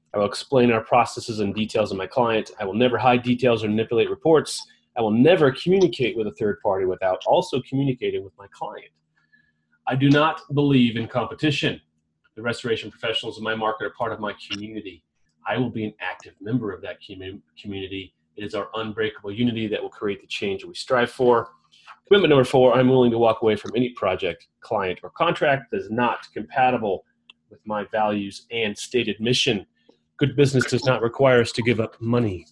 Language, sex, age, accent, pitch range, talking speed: English, male, 30-49, American, 100-140 Hz, 195 wpm